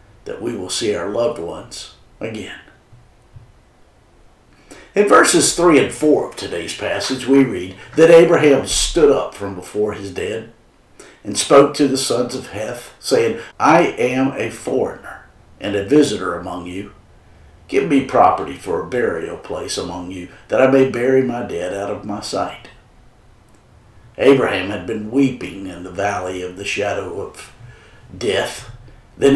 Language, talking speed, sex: English, 155 wpm, male